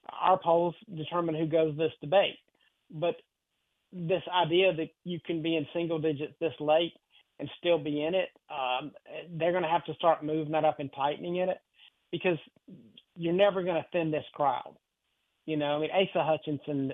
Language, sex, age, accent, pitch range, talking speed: English, male, 40-59, American, 150-175 Hz, 185 wpm